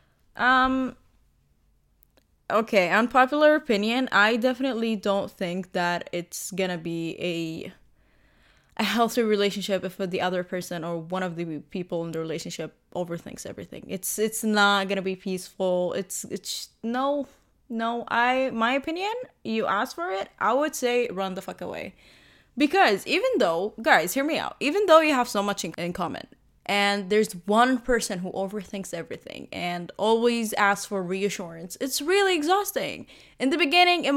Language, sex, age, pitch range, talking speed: English, female, 20-39, 185-255 Hz, 160 wpm